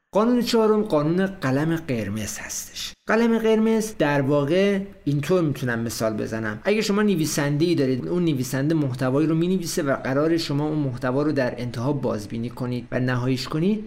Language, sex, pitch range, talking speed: Persian, male, 130-170 Hz, 165 wpm